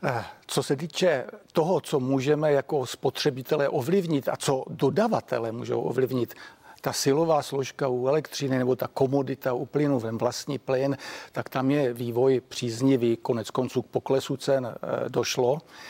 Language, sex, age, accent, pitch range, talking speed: Czech, male, 50-69, native, 125-145 Hz, 145 wpm